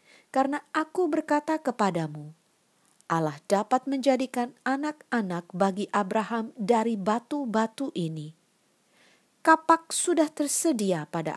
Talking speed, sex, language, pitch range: 90 wpm, female, Indonesian, 180-275 Hz